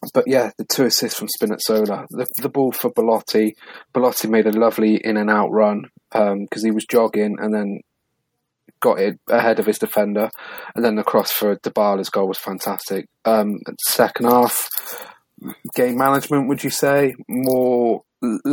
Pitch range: 105-125 Hz